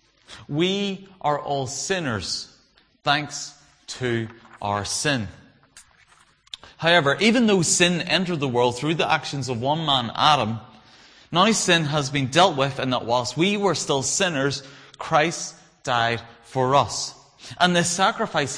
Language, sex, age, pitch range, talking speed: English, male, 30-49, 135-180 Hz, 135 wpm